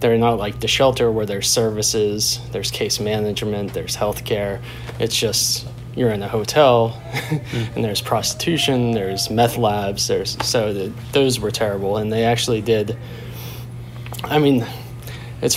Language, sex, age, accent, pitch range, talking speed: English, male, 20-39, American, 110-125 Hz, 150 wpm